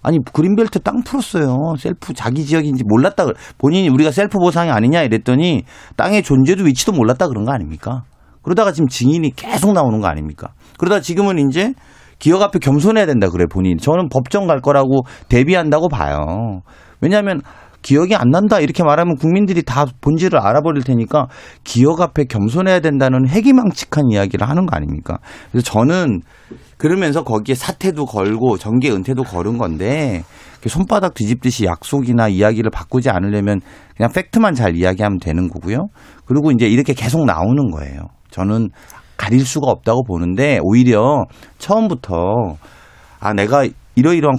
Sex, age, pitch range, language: male, 40-59, 110-160 Hz, Korean